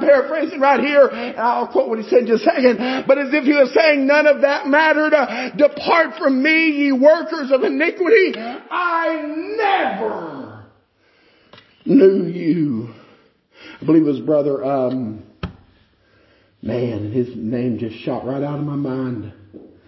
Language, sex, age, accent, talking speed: English, male, 50-69, American, 150 wpm